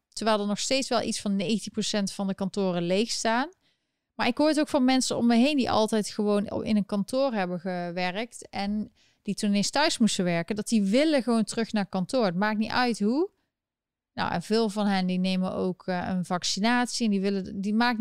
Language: Dutch